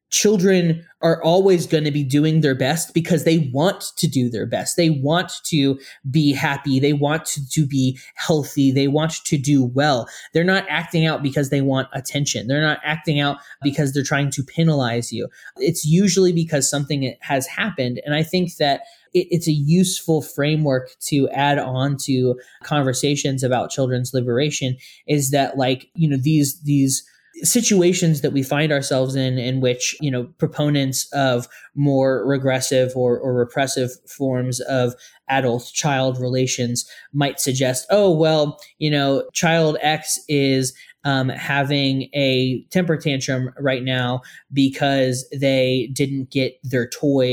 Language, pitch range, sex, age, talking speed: English, 130-150 Hz, male, 20-39, 155 wpm